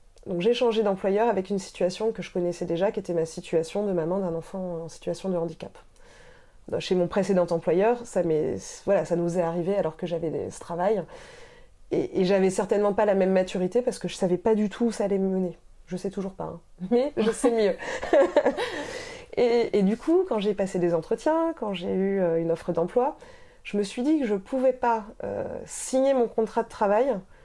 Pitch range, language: 175-225 Hz, French